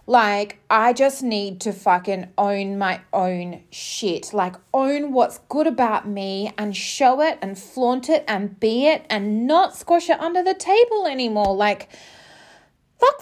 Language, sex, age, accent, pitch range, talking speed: English, female, 20-39, Australian, 210-325 Hz, 160 wpm